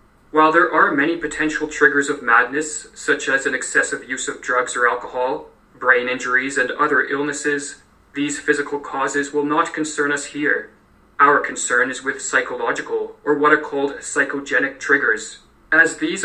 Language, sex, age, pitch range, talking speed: English, male, 20-39, 140-160 Hz, 160 wpm